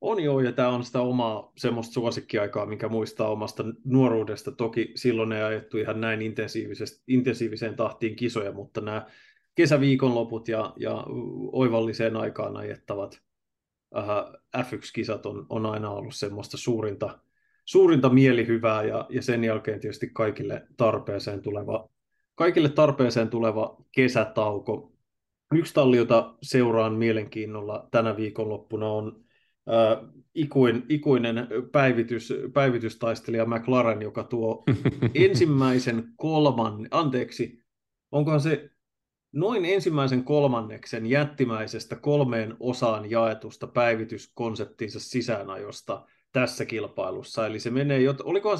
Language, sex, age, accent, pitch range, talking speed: Finnish, male, 20-39, native, 110-130 Hz, 100 wpm